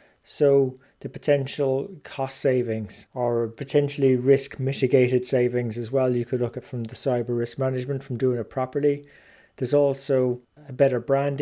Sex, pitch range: male, 120-140 Hz